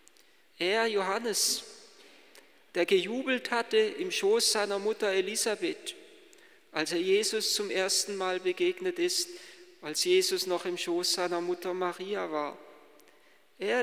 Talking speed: 120 wpm